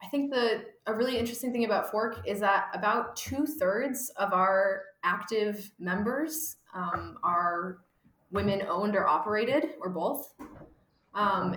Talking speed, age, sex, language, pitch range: 140 wpm, 20-39, female, English, 170-225 Hz